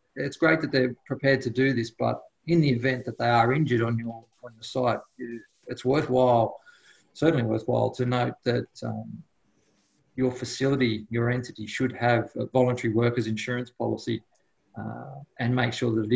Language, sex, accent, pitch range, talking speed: English, male, Australian, 120-140 Hz, 170 wpm